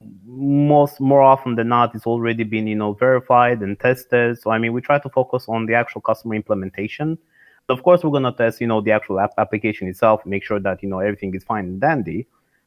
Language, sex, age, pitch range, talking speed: English, male, 30-49, 105-125 Hz, 235 wpm